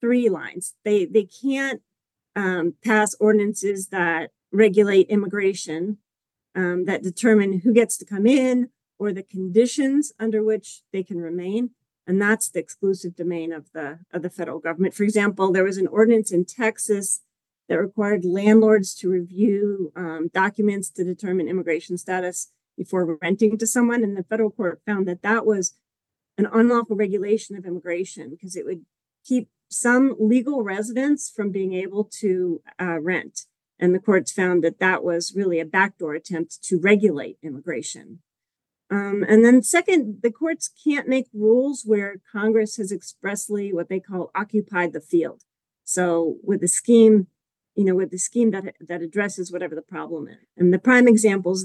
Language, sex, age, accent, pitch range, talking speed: English, female, 40-59, American, 180-215 Hz, 165 wpm